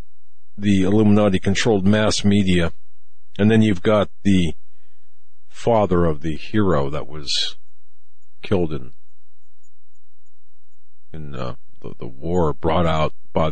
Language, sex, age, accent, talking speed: English, male, 50-69, American, 110 wpm